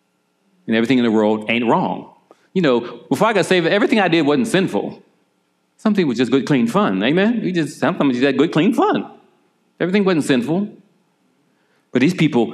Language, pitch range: English, 110-175 Hz